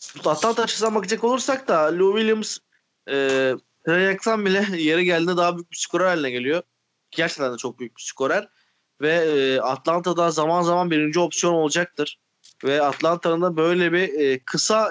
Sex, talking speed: male, 155 wpm